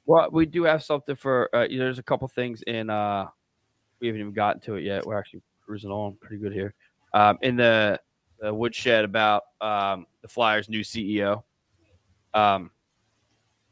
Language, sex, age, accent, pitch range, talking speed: English, male, 20-39, American, 100-125 Hz, 190 wpm